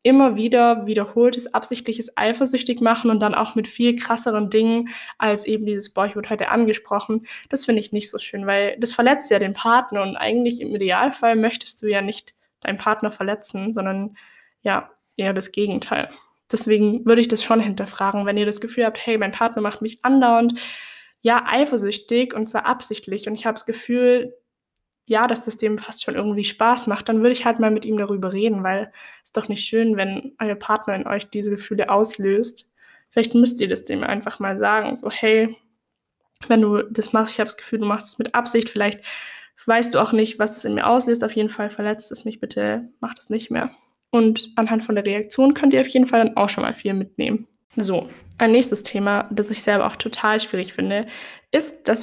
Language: German